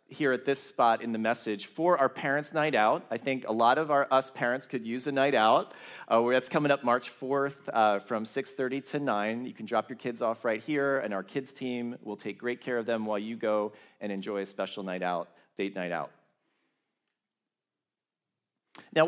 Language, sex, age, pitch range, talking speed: English, male, 40-59, 120-155 Hz, 210 wpm